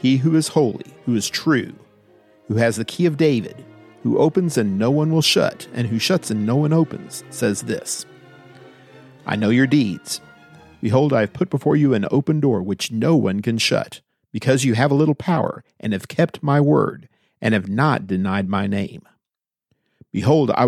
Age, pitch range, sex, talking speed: 50-69, 115-150 Hz, male, 190 wpm